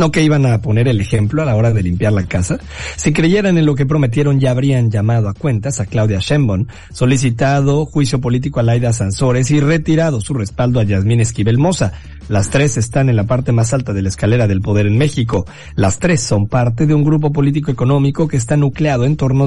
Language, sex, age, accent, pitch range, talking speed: Spanish, male, 50-69, Mexican, 105-145 Hz, 215 wpm